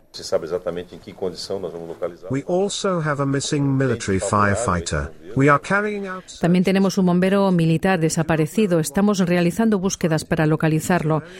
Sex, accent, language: female, Spanish, Spanish